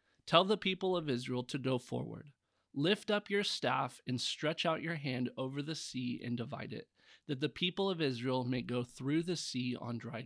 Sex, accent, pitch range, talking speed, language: male, American, 125-155 Hz, 205 wpm, English